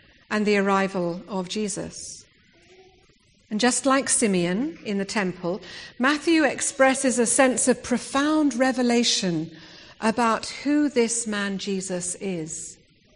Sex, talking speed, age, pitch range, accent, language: female, 115 wpm, 50-69, 190-240 Hz, British, English